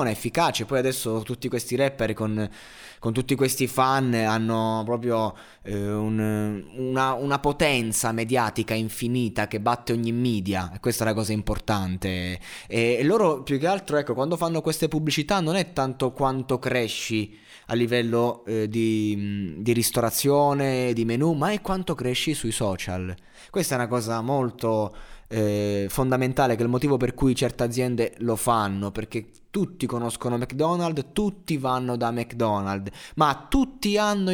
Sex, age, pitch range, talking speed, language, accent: male, 20-39, 110-140 Hz, 150 wpm, Italian, native